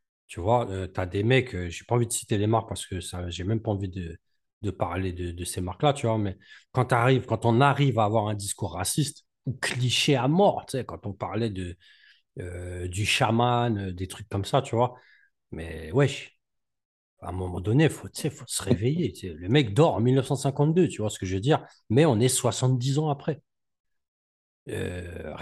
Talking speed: 220 wpm